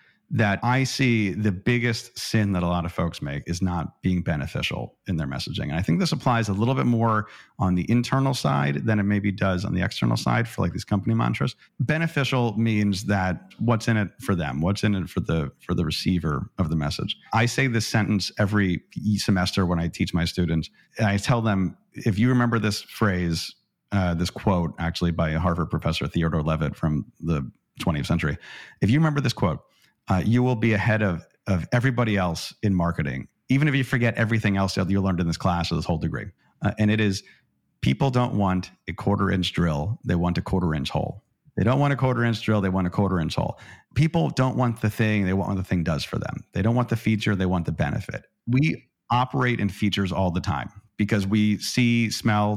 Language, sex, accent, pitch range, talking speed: English, male, American, 90-115 Hz, 220 wpm